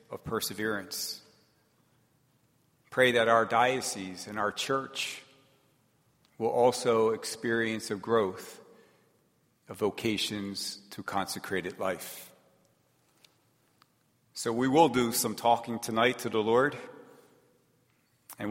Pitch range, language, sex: 105-125 Hz, English, male